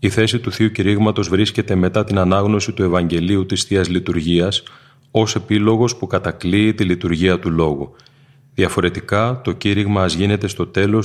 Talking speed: 150 wpm